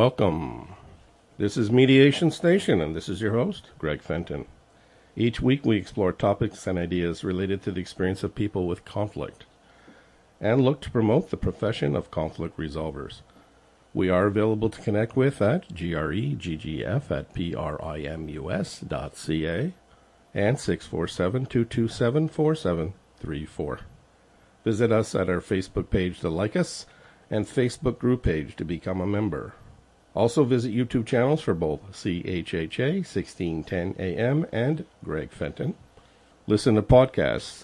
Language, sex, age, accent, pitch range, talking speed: English, male, 50-69, American, 90-125 Hz, 125 wpm